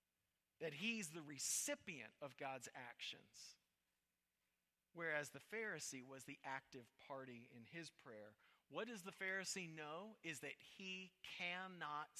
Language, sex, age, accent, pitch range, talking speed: English, male, 40-59, American, 120-160 Hz, 130 wpm